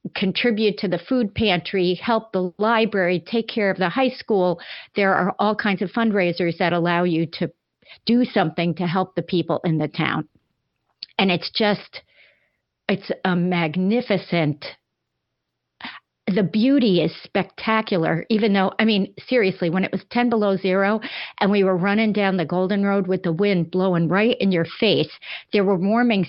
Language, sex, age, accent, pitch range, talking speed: English, female, 50-69, American, 175-215 Hz, 165 wpm